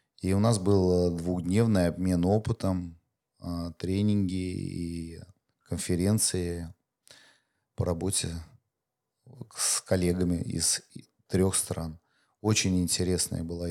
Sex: male